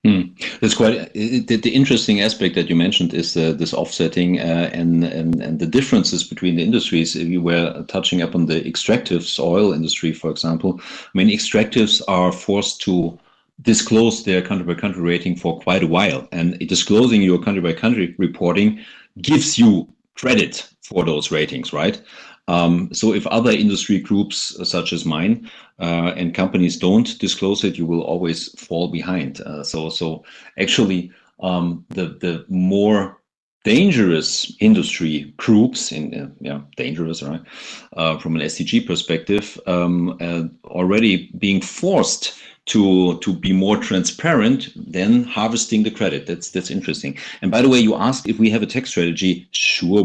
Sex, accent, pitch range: male, German, 85-105 Hz